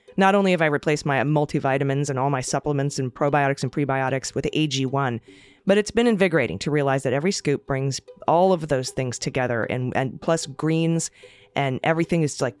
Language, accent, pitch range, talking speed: English, American, 135-170 Hz, 190 wpm